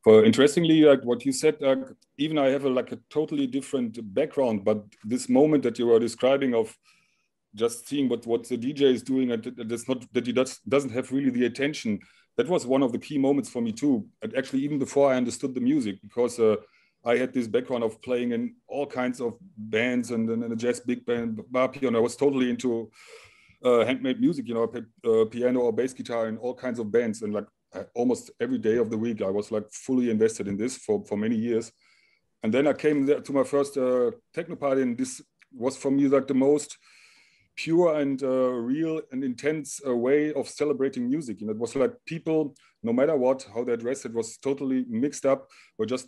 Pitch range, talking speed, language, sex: 120-145 Hz, 220 wpm, English, male